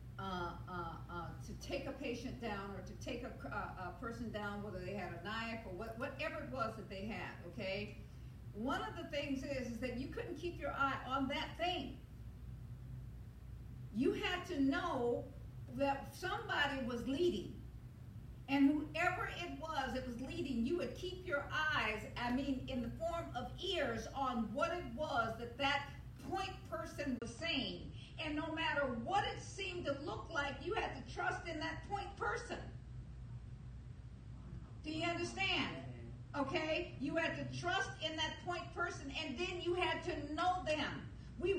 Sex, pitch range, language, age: female, 270-350 Hz, English, 50-69